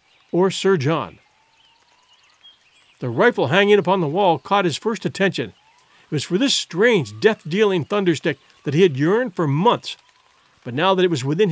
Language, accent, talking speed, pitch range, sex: English, American, 165 wpm, 165-215 Hz, male